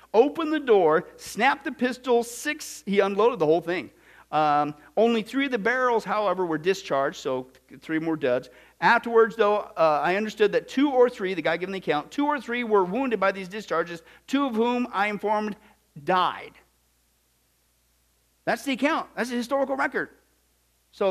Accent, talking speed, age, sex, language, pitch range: American, 175 wpm, 50-69, male, English, 195-270 Hz